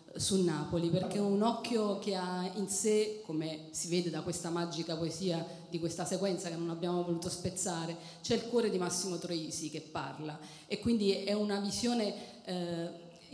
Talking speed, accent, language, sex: 170 wpm, native, Italian, female